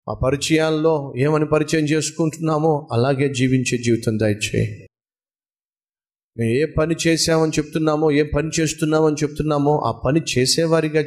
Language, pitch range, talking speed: Telugu, 125-155 Hz, 110 wpm